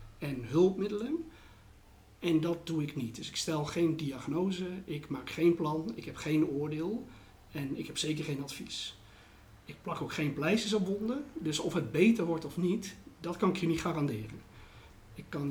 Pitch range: 125-170 Hz